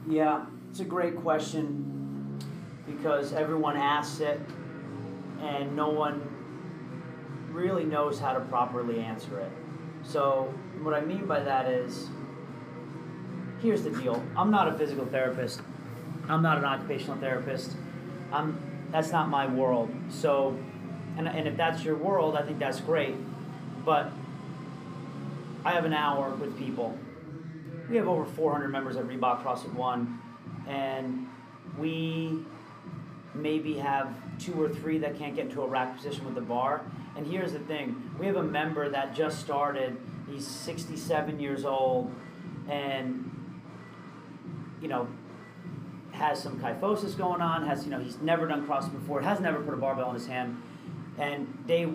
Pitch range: 135-160 Hz